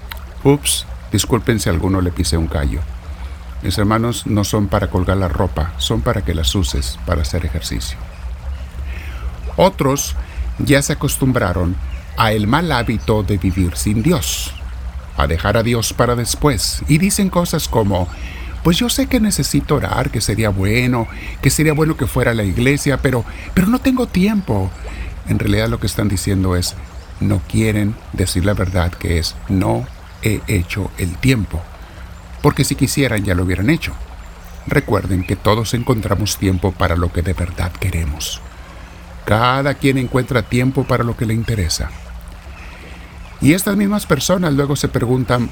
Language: Spanish